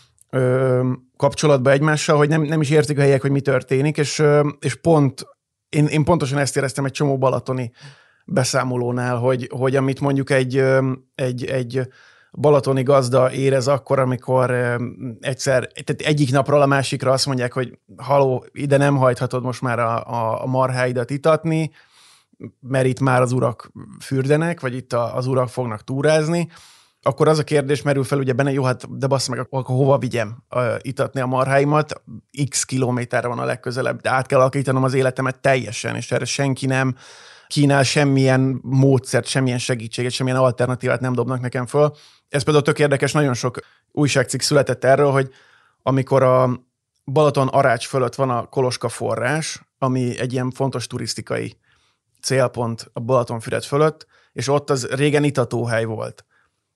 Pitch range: 125-140 Hz